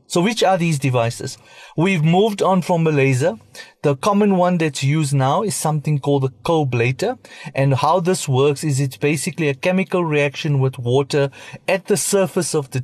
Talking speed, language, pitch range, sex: 180 wpm, English, 135-180 Hz, male